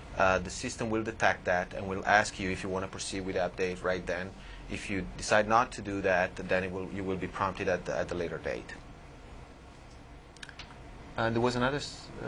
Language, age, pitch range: Spanish, 30-49, 95-115 Hz